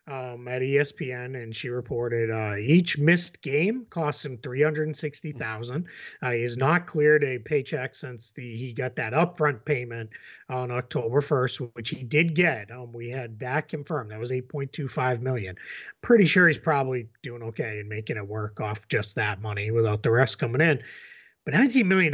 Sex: male